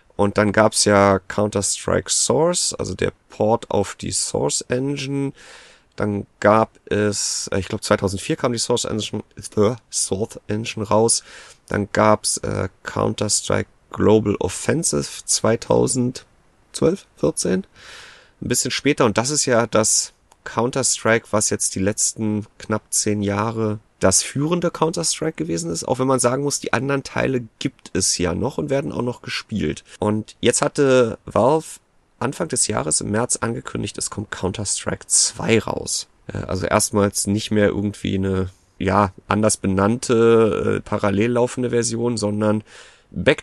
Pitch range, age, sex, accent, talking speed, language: 105-125 Hz, 30-49, male, German, 150 wpm, German